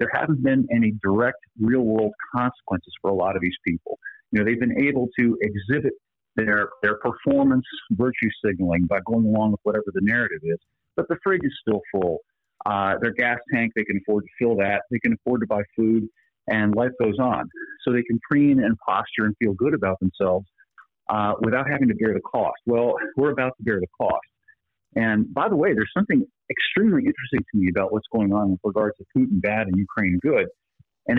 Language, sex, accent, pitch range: English, male, American, 105-135 Hz